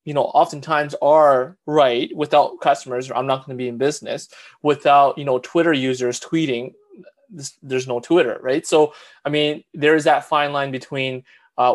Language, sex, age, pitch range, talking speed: English, male, 20-39, 120-140 Hz, 180 wpm